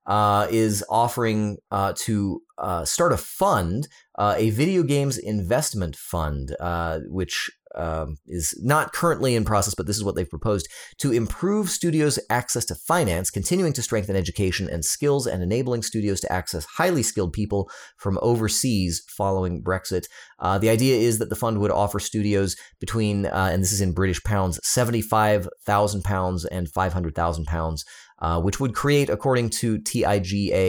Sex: male